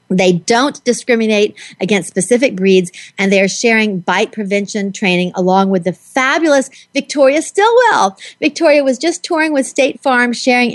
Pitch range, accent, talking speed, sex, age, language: 195-260 Hz, American, 150 wpm, female, 40-59, English